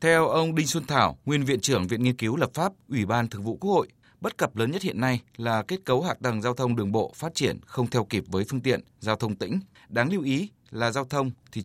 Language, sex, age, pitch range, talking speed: Vietnamese, male, 20-39, 110-145 Hz, 270 wpm